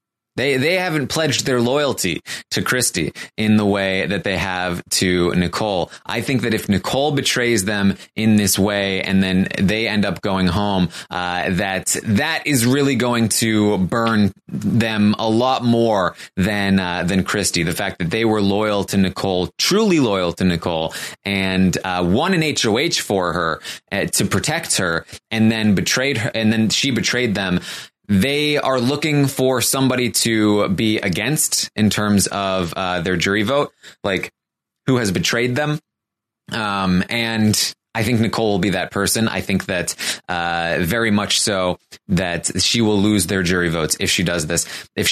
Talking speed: 170 wpm